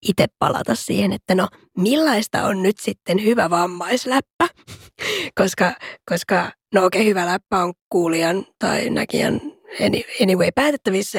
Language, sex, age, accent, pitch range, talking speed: Finnish, female, 20-39, native, 190-275 Hz, 130 wpm